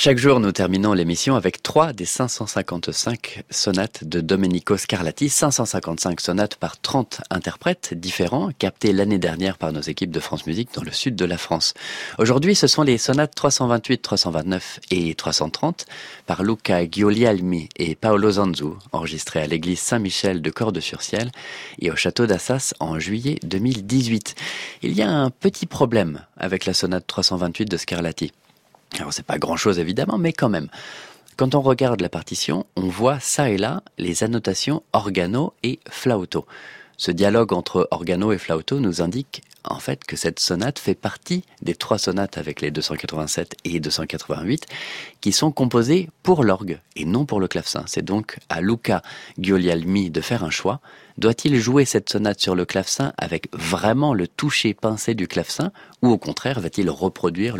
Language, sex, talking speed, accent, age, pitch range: French, male, 170 wpm, French, 30-49, 90-125 Hz